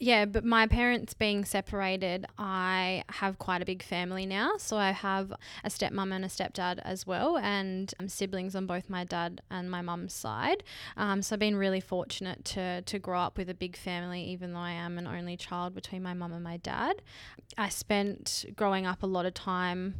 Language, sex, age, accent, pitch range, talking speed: English, female, 10-29, Australian, 180-205 Hz, 205 wpm